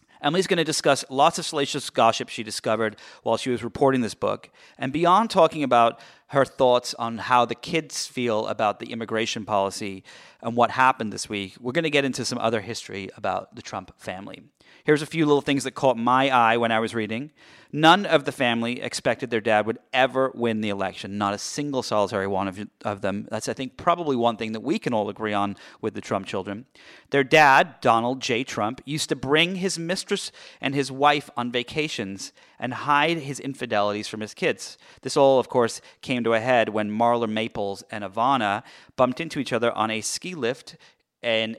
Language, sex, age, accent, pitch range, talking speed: English, male, 40-59, American, 110-140 Hz, 205 wpm